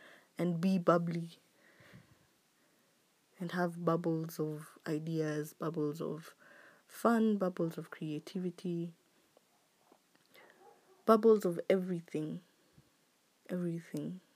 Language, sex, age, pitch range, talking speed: English, female, 20-39, 165-195 Hz, 75 wpm